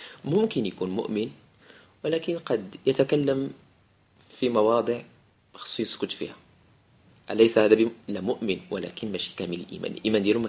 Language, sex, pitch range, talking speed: Arabic, male, 95-125 Hz, 125 wpm